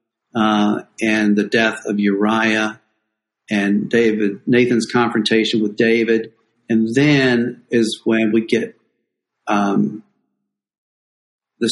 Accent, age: American, 50-69